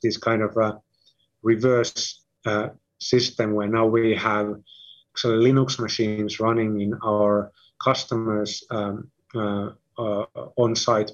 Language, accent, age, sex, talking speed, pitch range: English, Finnish, 30-49, male, 115 wpm, 105-120 Hz